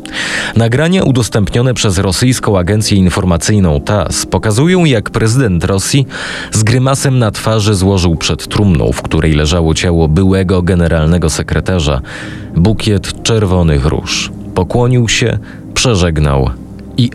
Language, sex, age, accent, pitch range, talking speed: Polish, male, 30-49, native, 85-110 Hz, 110 wpm